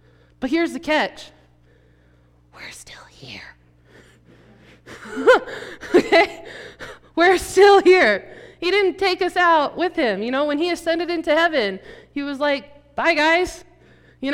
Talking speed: 130 wpm